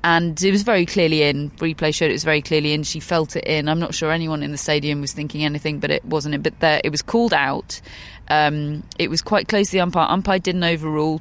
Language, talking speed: English, 255 wpm